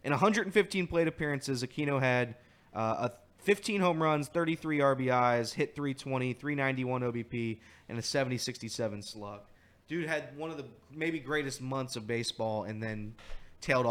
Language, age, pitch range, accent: English, 20-39, 115-150 Hz, American